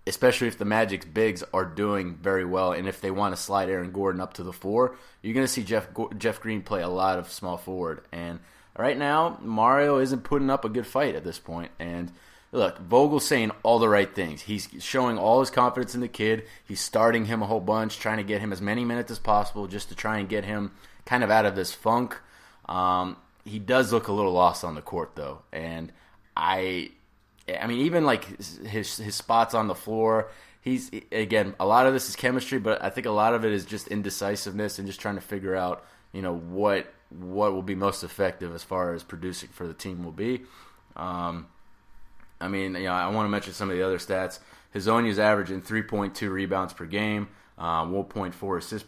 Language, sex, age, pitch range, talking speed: English, male, 20-39, 90-110 Hz, 220 wpm